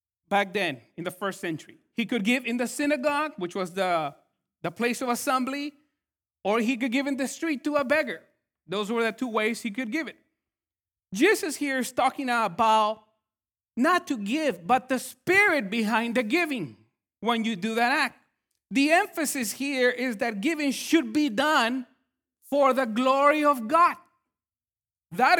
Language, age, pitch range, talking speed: English, 40-59, 195-280 Hz, 170 wpm